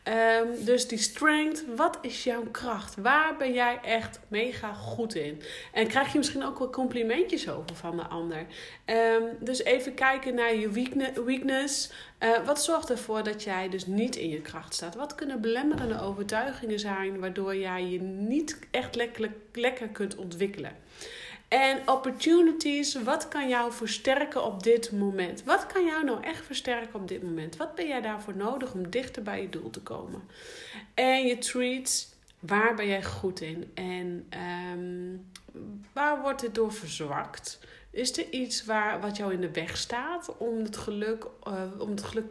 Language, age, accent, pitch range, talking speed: Dutch, 40-59, Dutch, 195-260 Hz, 165 wpm